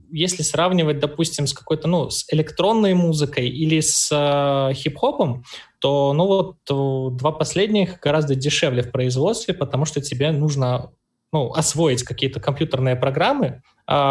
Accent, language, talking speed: native, Russian, 135 wpm